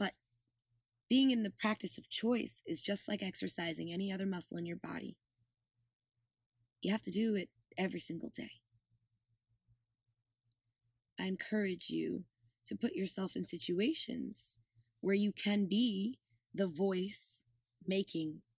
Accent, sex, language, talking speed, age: American, female, English, 125 wpm, 20-39